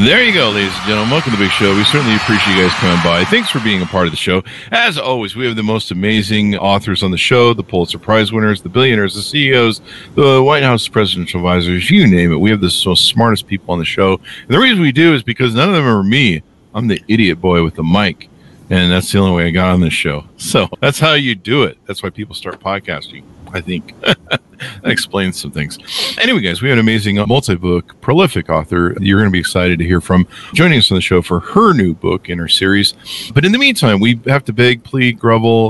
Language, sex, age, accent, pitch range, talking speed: English, male, 50-69, American, 90-120 Hz, 245 wpm